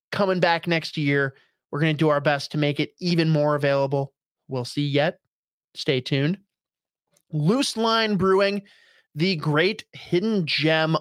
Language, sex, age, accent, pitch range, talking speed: English, male, 30-49, American, 140-170 Hz, 155 wpm